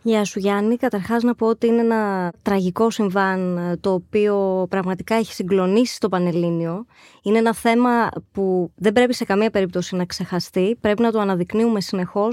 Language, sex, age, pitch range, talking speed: Greek, female, 20-39, 190-245 Hz, 165 wpm